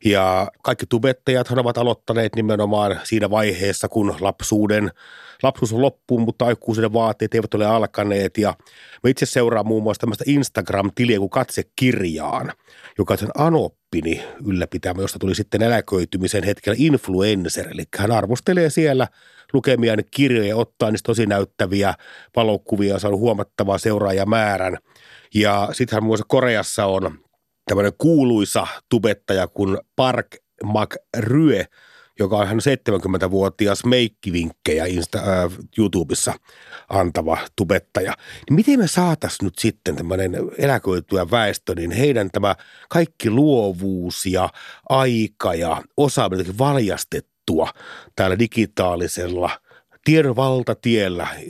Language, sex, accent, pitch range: Finnish, male, native, 95-120 Hz